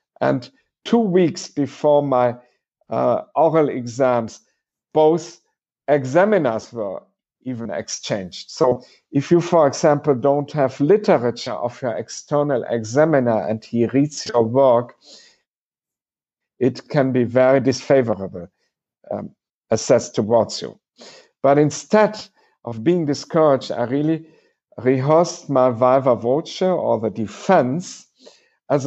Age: 50-69